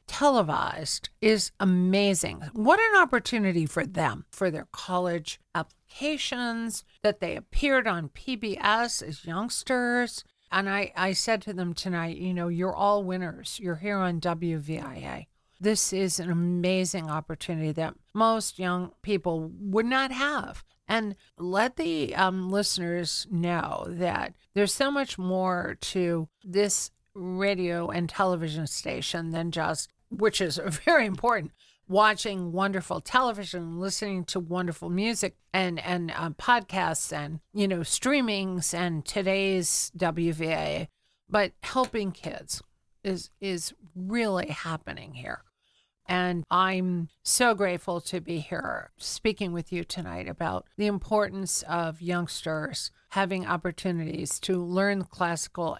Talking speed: 125 wpm